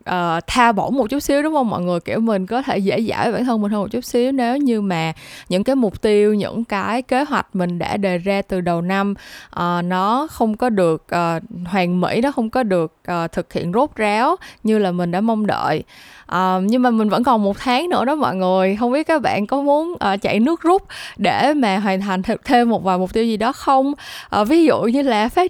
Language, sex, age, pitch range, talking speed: Vietnamese, female, 20-39, 185-250 Hz, 235 wpm